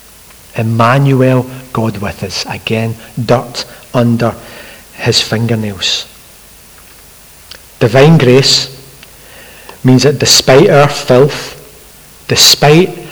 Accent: British